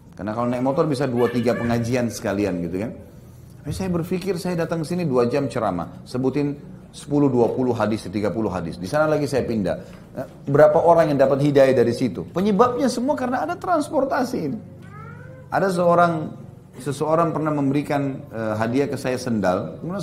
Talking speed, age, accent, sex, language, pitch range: 160 wpm, 30-49, native, male, Indonesian, 125-185 Hz